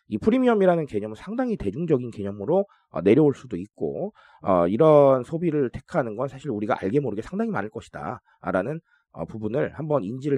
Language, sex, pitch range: Korean, male, 110-180 Hz